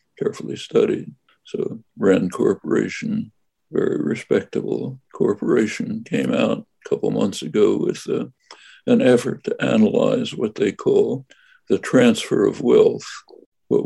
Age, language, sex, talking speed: 60-79, English, male, 115 wpm